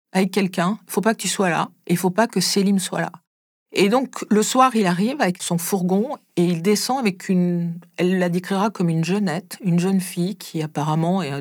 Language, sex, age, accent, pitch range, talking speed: French, female, 50-69, French, 170-210 Hz, 230 wpm